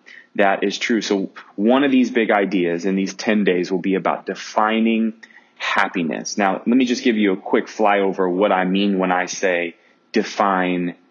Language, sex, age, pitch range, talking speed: English, male, 30-49, 95-125 Hz, 185 wpm